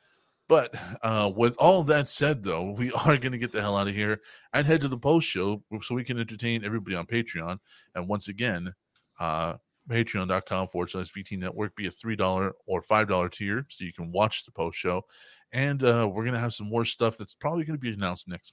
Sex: male